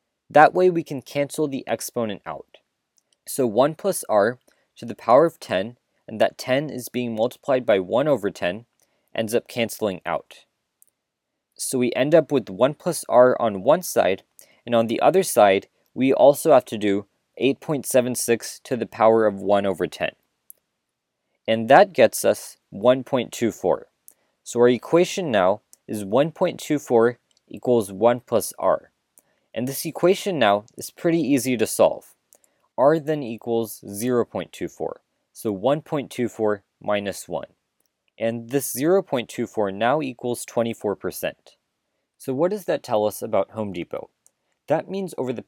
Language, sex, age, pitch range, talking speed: English, male, 20-39, 115-150 Hz, 145 wpm